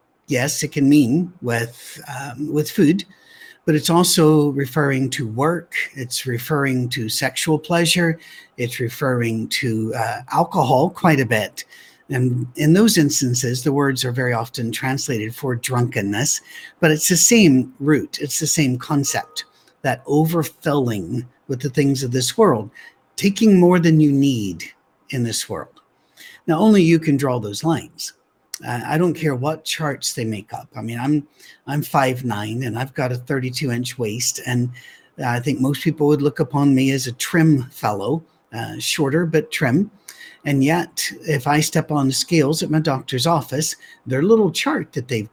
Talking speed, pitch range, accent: 165 wpm, 125-160 Hz, American